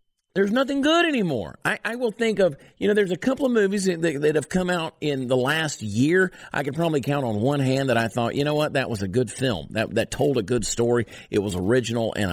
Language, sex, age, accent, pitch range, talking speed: English, male, 50-69, American, 120-170 Hz, 260 wpm